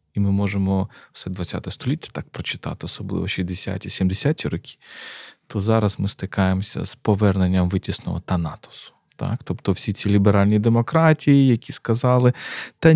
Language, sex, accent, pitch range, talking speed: Ukrainian, male, native, 100-130 Hz, 130 wpm